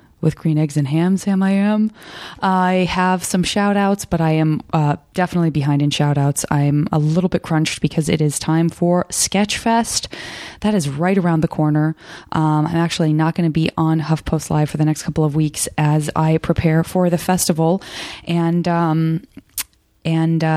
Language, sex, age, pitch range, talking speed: English, female, 20-39, 150-185 Hz, 185 wpm